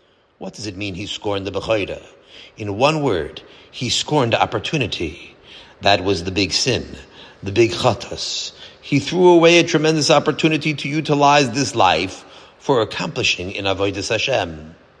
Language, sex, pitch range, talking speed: English, male, 105-155 Hz, 150 wpm